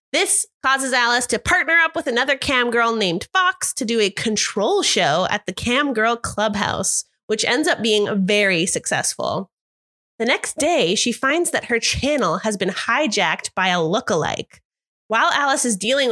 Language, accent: English, American